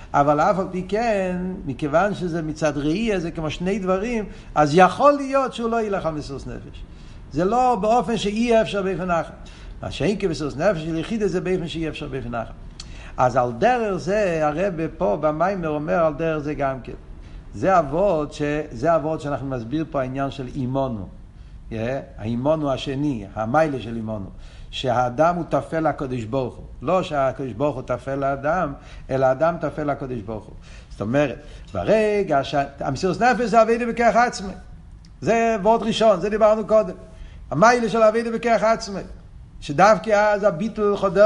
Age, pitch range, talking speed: 60-79, 135-205 Hz, 150 wpm